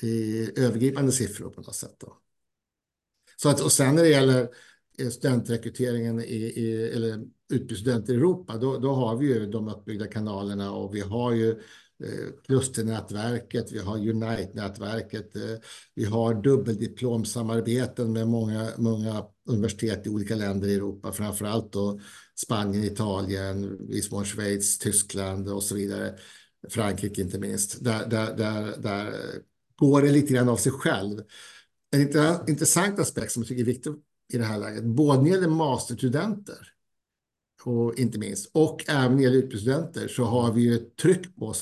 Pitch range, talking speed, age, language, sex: 110-130 Hz, 150 wpm, 60-79, Swedish, male